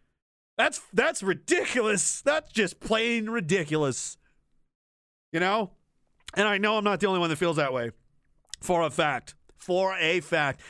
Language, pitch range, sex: English, 160-220 Hz, male